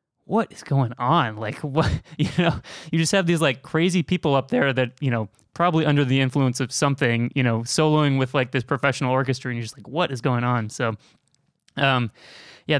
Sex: male